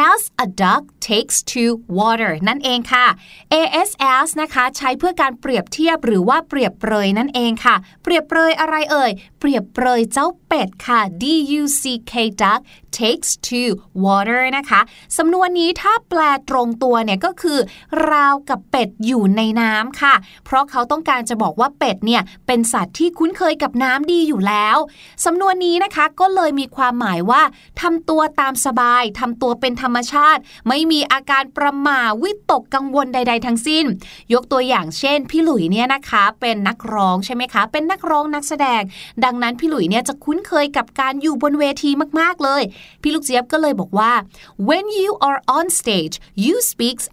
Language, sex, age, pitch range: Thai, female, 20-39, 230-310 Hz